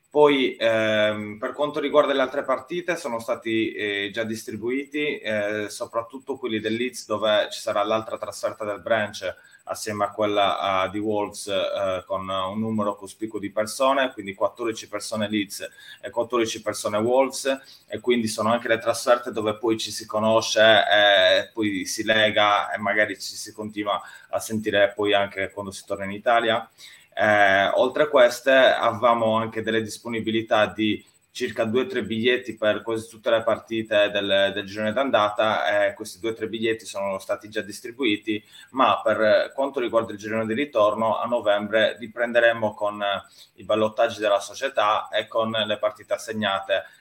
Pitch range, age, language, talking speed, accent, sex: 105-120 Hz, 20-39, Italian, 165 wpm, native, male